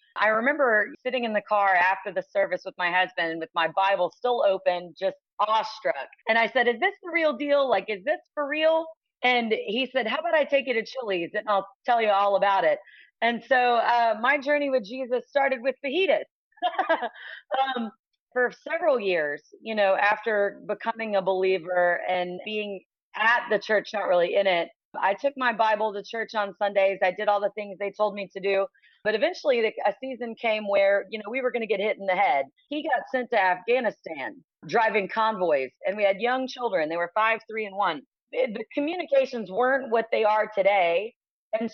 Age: 30-49